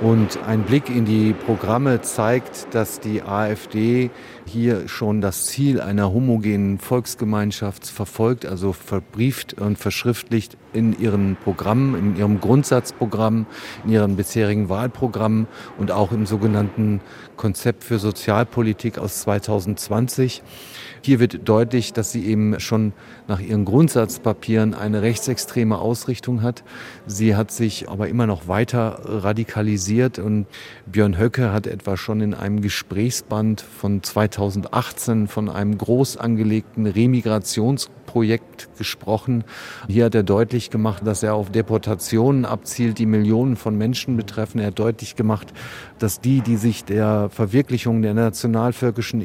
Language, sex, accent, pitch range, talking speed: German, male, German, 105-120 Hz, 130 wpm